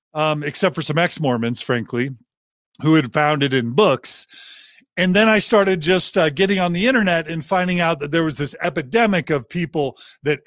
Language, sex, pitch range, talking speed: English, male, 150-185 Hz, 190 wpm